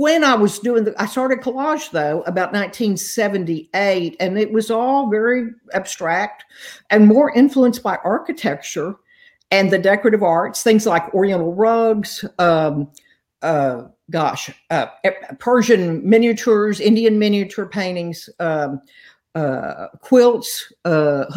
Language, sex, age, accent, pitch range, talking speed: English, female, 50-69, American, 175-225 Hz, 120 wpm